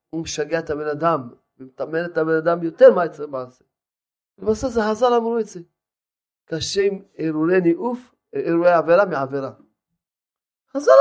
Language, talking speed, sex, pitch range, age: Hebrew, 130 wpm, male, 135-195 Hz, 40-59